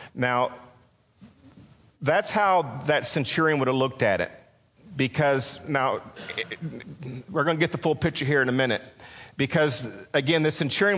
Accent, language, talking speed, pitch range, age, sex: American, English, 160 wpm, 115-150 Hz, 40-59, male